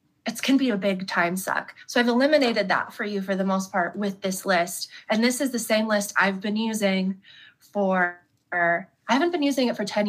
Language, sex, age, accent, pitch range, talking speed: English, female, 20-39, American, 190-220 Hz, 220 wpm